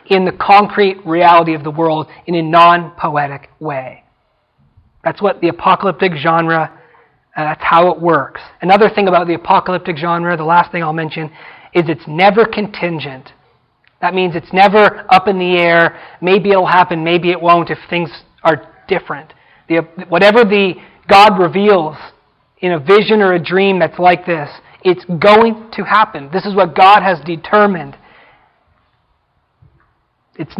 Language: English